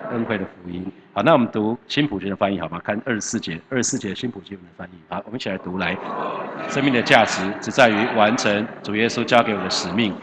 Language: Chinese